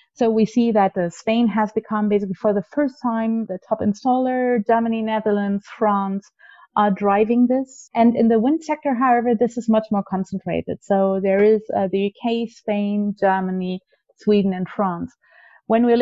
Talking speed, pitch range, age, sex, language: 170 wpm, 195-235 Hz, 30-49, female, English